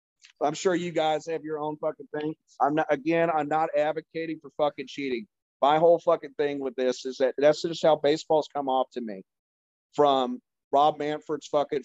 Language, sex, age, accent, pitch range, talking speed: English, male, 40-59, American, 145-180 Hz, 190 wpm